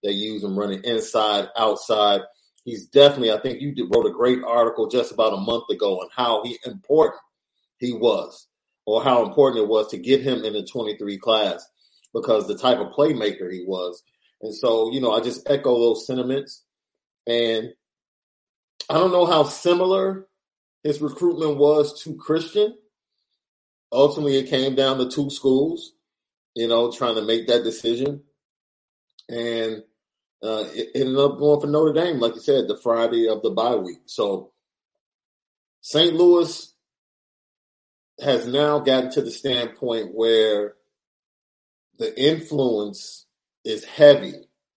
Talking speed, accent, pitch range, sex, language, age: 150 wpm, American, 110-155 Hz, male, English, 40-59